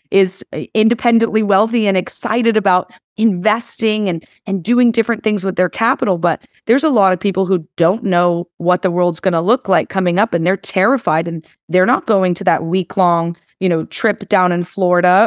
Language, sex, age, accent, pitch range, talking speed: English, female, 30-49, American, 175-215 Hz, 195 wpm